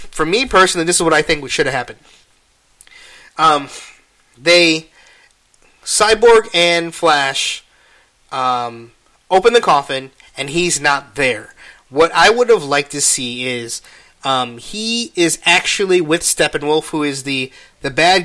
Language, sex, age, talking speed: English, male, 30-49, 140 wpm